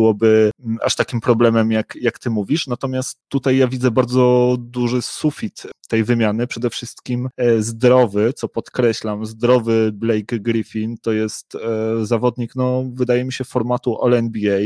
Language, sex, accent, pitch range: Polish, male, native, 110-120 Hz